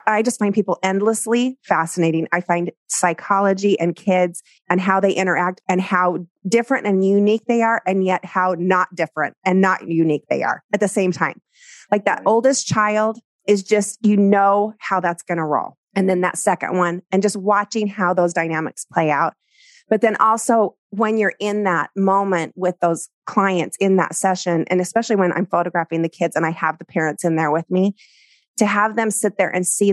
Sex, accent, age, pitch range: female, American, 30-49, 170-205 Hz